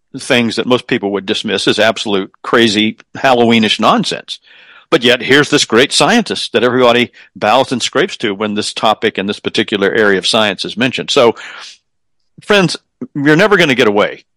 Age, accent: 50-69, American